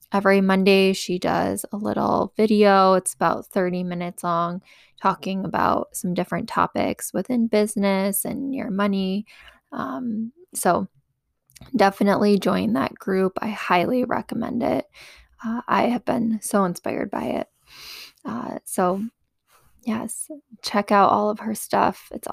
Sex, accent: female, American